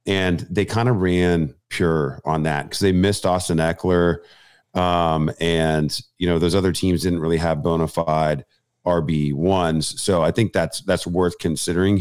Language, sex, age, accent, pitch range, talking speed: English, male, 40-59, American, 85-100 Hz, 170 wpm